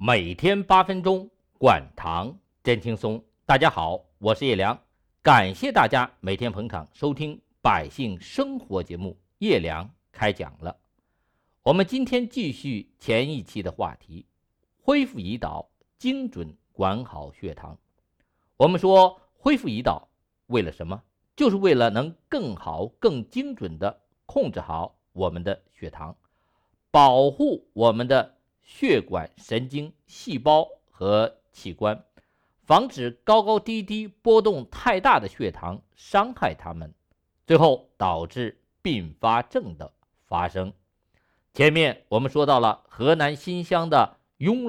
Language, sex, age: Chinese, male, 50-69